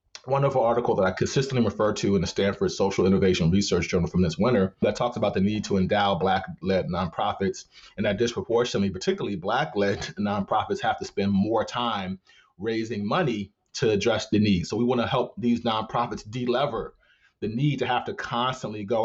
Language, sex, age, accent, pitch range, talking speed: English, male, 30-49, American, 95-125 Hz, 190 wpm